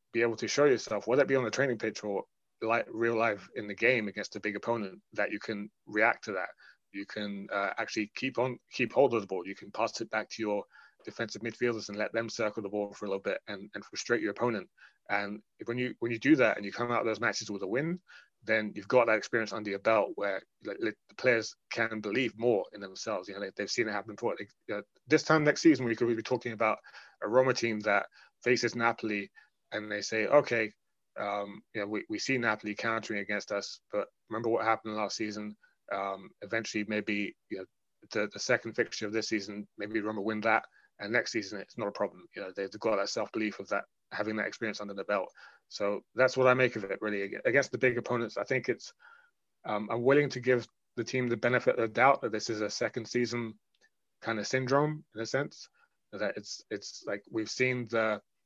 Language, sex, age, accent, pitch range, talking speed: English, male, 30-49, British, 105-120 Hz, 235 wpm